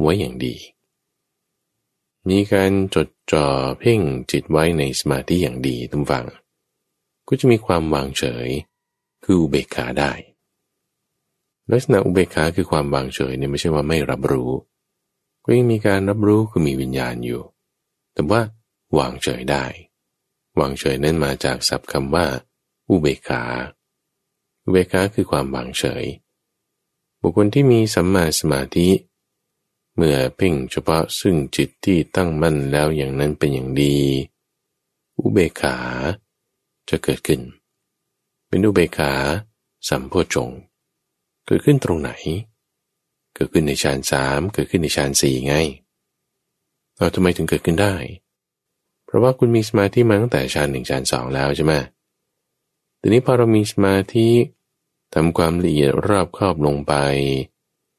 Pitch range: 70-95 Hz